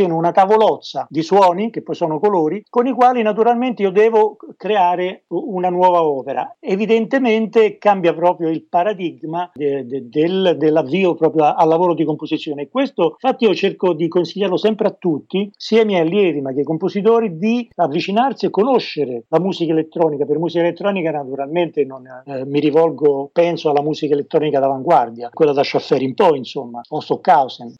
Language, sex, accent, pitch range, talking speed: Italian, male, native, 150-195 Hz, 170 wpm